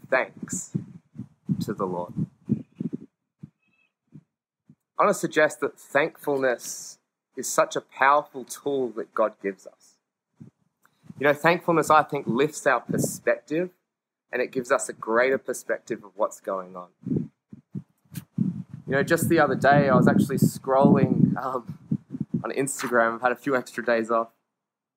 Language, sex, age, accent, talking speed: English, male, 20-39, Australian, 140 wpm